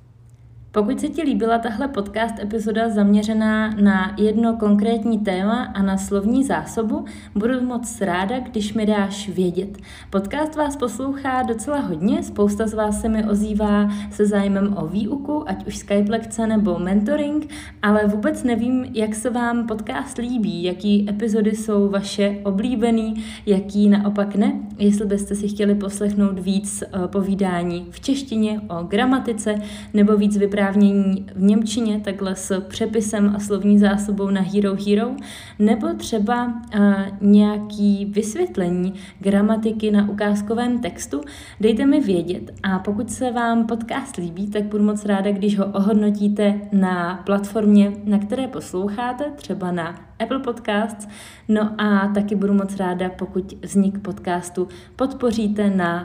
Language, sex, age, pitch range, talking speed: Czech, female, 30-49, 195-225 Hz, 140 wpm